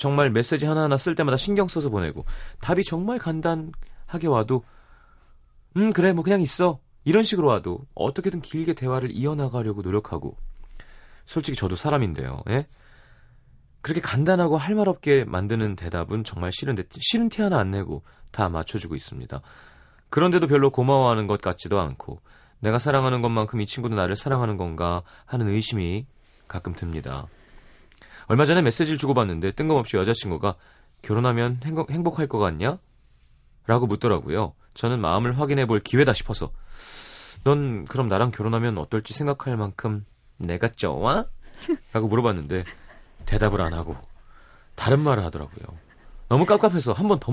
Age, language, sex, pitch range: 30-49, Korean, male, 90-145 Hz